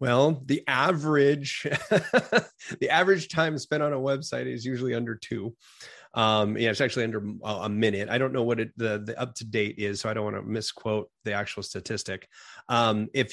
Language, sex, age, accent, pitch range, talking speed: English, male, 30-49, American, 110-135 Hz, 185 wpm